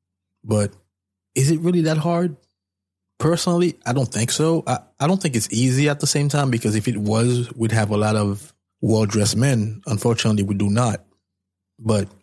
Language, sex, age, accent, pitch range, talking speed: English, male, 20-39, American, 100-120 Hz, 180 wpm